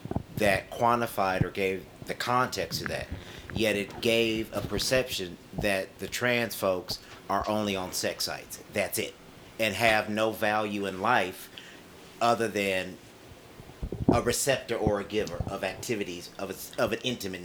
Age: 40-59